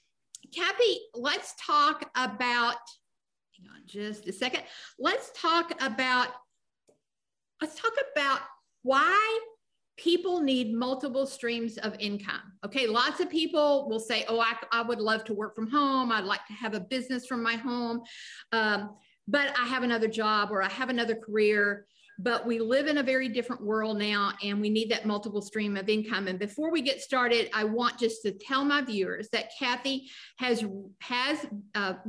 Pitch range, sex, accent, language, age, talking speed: 220-285 Hz, female, American, English, 50-69, 170 wpm